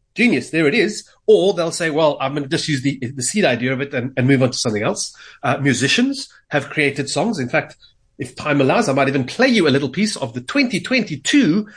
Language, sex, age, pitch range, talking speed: English, male, 30-49, 135-185 Hz, 240 wpm